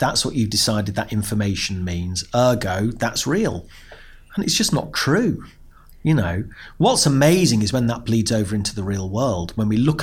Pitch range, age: 105-145 Hz, 40-59